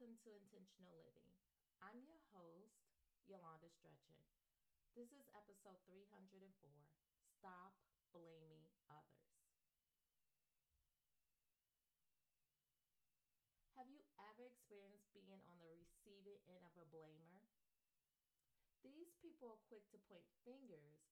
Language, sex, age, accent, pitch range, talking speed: English, female, 40-59, American, 175-230 Hz, 100 wpm